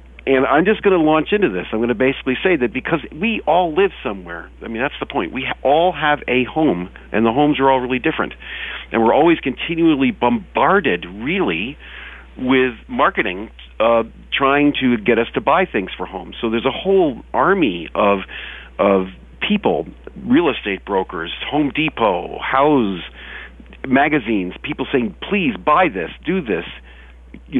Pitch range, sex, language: 95-135 Hz, male, English